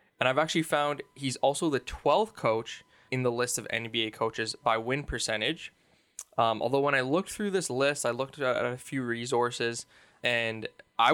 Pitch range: 115-145 Hz